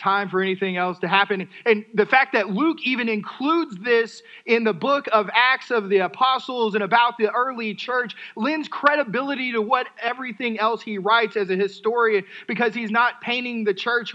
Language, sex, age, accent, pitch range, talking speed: English, male, 30-49, American, 195-240 Hz, 185 wpm